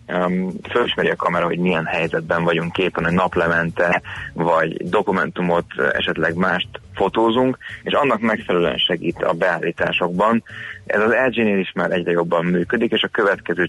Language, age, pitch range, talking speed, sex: Hungarian, 30-49, 85-100 Hz, 145 wpm, male